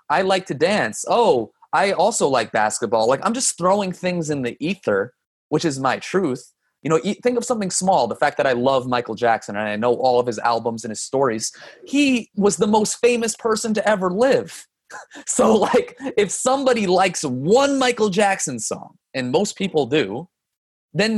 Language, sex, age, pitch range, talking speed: English, male, 30-49, 125-205 Hz, 190 wpm